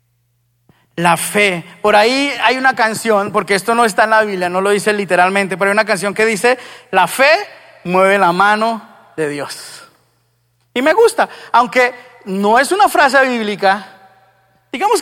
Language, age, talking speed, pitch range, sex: Spanish, 30-49, 165 wpm, 145-230 Hz, male